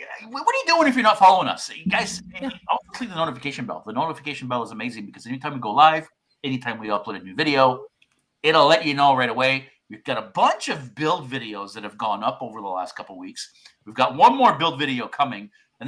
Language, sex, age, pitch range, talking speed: English, male, 50-69, 125-165 Hz, 245 wpm